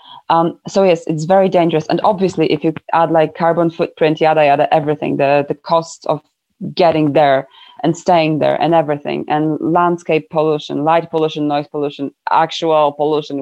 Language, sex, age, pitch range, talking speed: English, female, 20-39, 160-195 Hz, 165 wpm